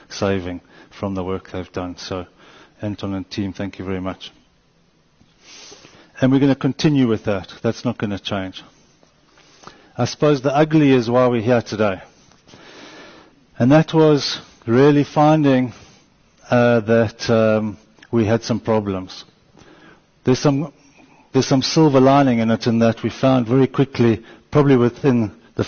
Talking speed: 145 wpm